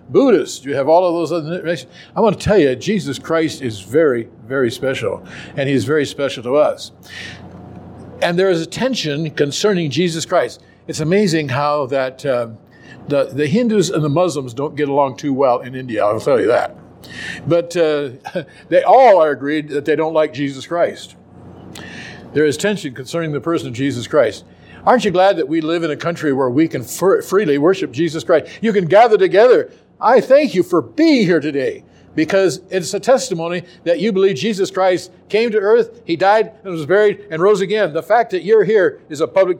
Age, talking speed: 60-79, 200 wpm